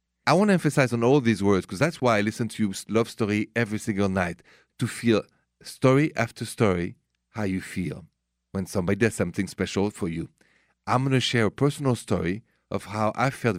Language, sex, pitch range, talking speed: English, male, 85-120 Hz, 205 wpm